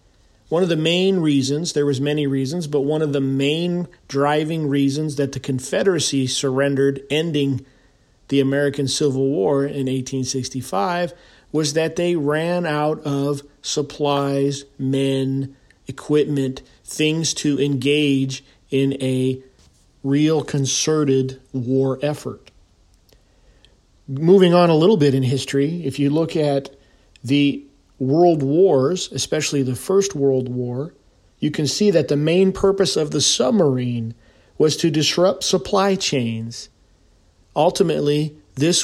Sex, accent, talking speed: male, American, 125 wpm